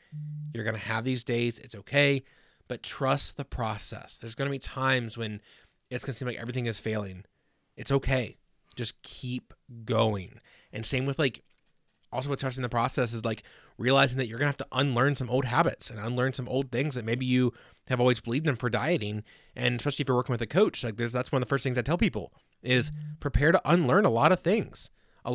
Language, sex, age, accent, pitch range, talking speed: English, male, 20-39, American, 115-140 Hz, 225 wpm